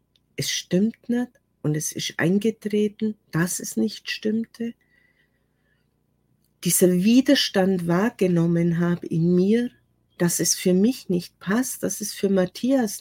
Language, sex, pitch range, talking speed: German, female, 155-220 Hz, 120 wpm